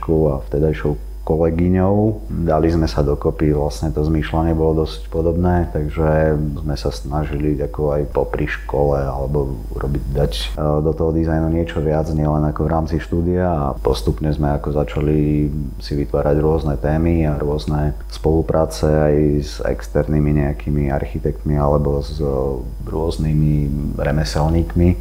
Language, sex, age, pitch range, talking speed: Slovak, male, 30-49, 75-80 Hz, 130 wpm